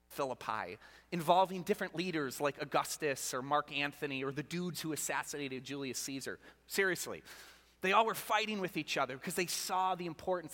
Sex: male